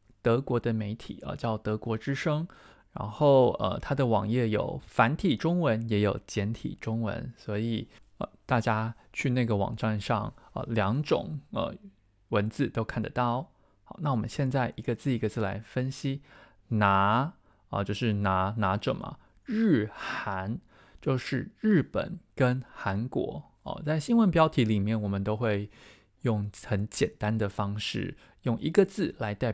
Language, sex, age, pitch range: Chinese, male, 20-39, 105-145 Hz